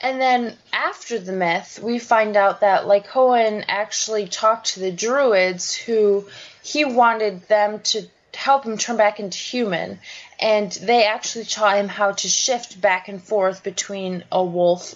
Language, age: English, 20-39